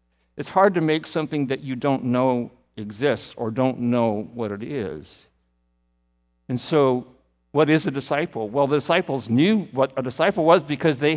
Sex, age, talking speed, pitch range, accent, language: male, 50-69, 170 wpm, 115-150 Hz, American, English